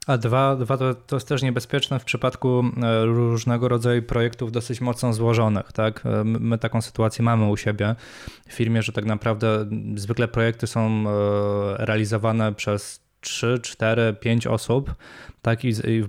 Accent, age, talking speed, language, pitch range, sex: native, 20-39, 150 wpm, Polish, 105-120 Hz, male